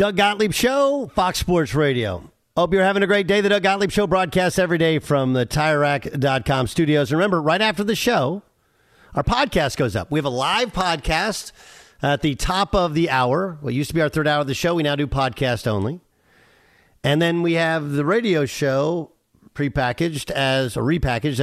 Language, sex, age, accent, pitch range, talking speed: English, male, 50-69, American, 120-165 Hz, 200 wpm